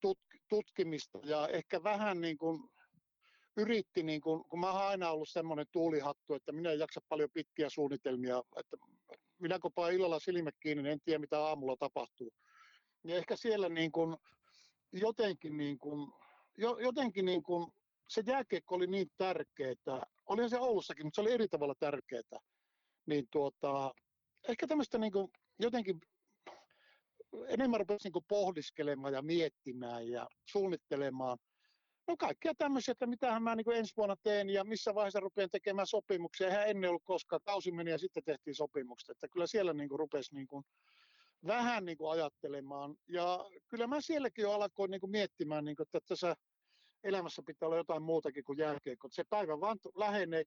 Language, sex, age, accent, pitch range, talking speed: Finnish, male, 60-79, native, 150-210 Hz, 160 wpm